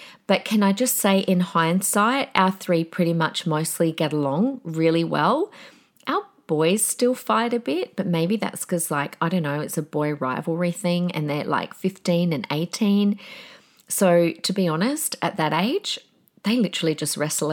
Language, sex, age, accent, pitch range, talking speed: English, female, 30-49, Australian, 165-225 Hz, 180 wpm